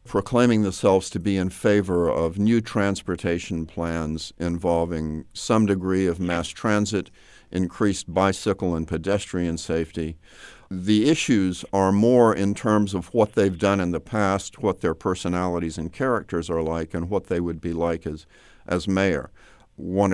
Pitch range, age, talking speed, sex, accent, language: 85-95 Hz, 50-69, 150 wpm, male, American, English